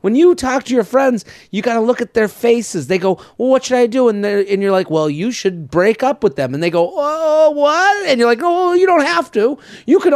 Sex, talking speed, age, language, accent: male, 270 wpm, 30-49, English, American